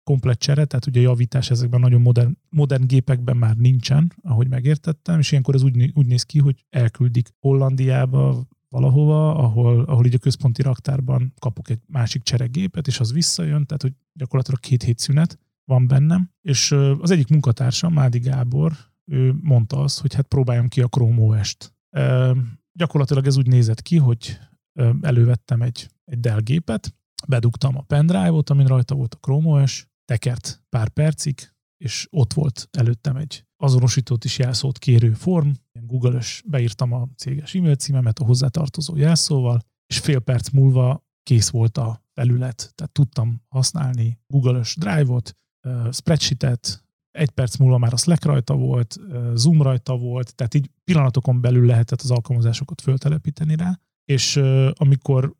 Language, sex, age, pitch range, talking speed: Hungarian, male, 30-49, 125-145 Hz, 155 wpm